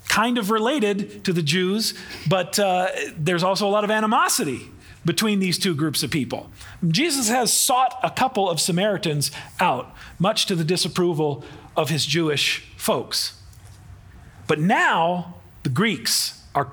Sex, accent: male, American